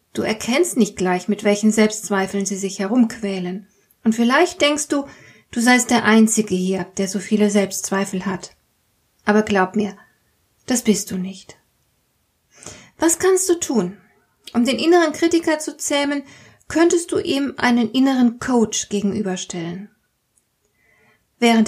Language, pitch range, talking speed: German, 205-250 Hz, 135 wpm